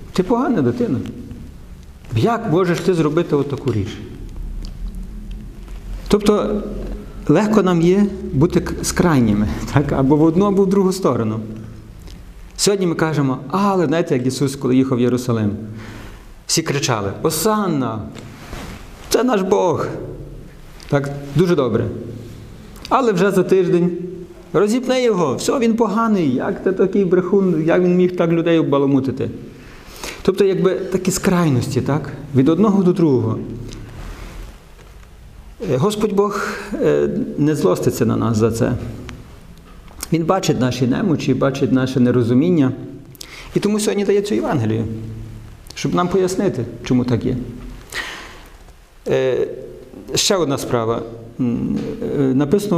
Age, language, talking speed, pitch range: 50-69, Ukrainian, 115 wpm, 115-180 Hz